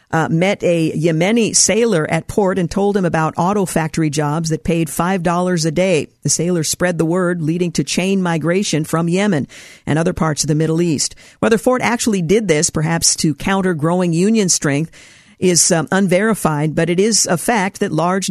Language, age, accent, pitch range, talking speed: English, 50-69, American, 160-195 Hz, 190 wpm